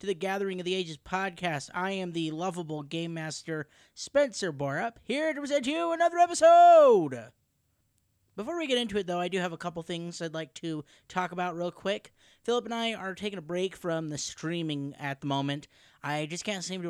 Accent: American